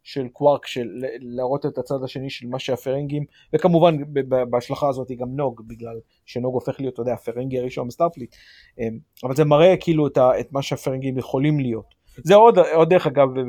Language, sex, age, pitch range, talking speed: Hebrew, male, 30-49, 120-150 Hz, 180 wpm